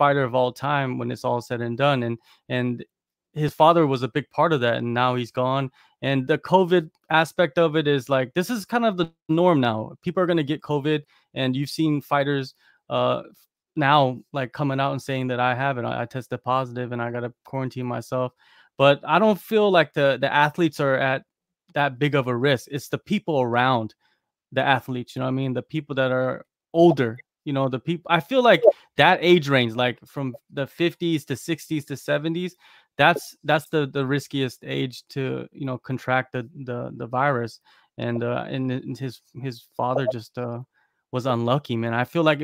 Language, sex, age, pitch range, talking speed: English, male, 20-39, 125-155 Hz, 210 wpm